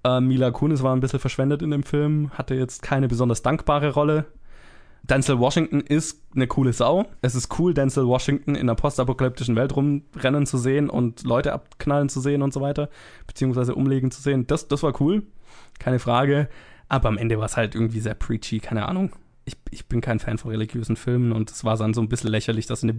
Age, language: 20-39, German